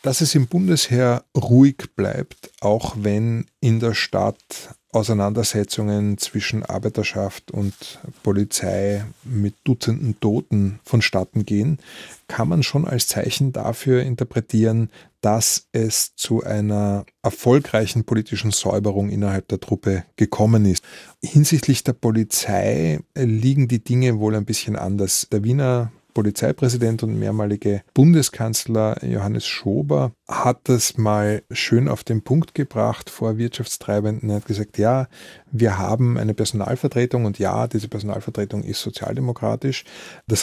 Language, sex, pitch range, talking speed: German, male, 105-130 Hz, 125 wpm